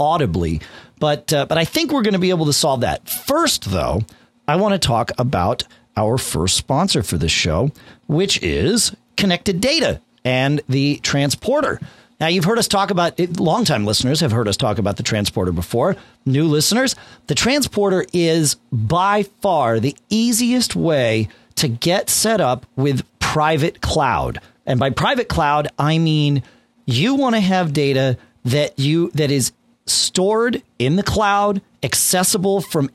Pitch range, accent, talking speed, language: 120-185 Hz, American, 160 wpm, English